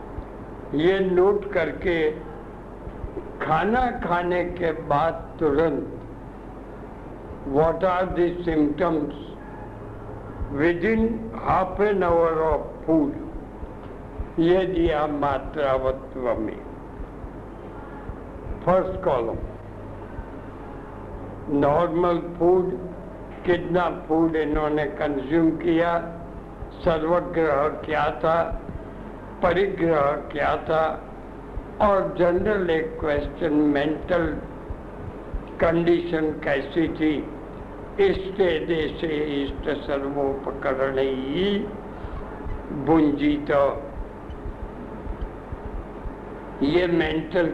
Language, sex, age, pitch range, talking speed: Hindi, male, 60-79, 145-175 Hz, 70 wpm